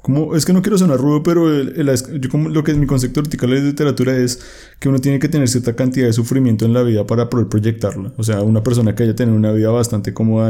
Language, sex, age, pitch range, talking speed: Spanish, male, 30-49, 110-130 Hz, 275 wpm